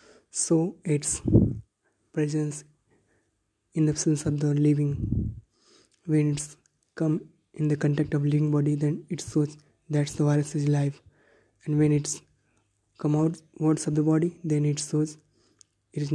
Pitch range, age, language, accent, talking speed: 145-160 Hz, 20-39, Hindi, native, 145 wpm